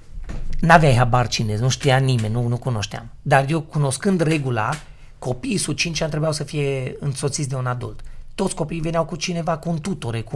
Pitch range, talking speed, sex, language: 120-175 Hz, 190 wpm, male, Romanian